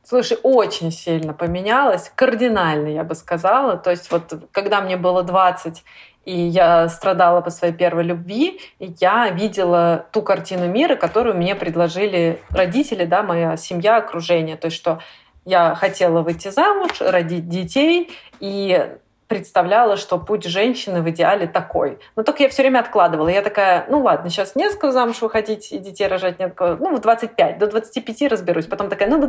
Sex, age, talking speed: female, 20-39, 165 wpm